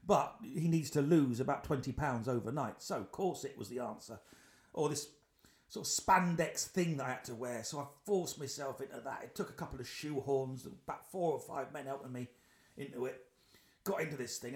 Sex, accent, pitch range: male, British, 140-235 Hz